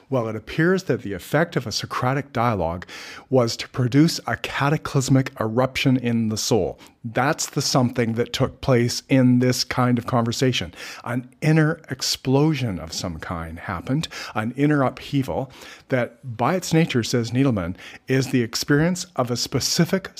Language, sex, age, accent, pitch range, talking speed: English, male, 50-69, American, 110-135 Hz, 155 wpm